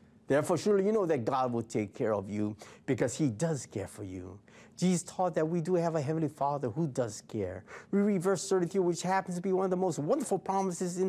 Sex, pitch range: male, 120-195 Hz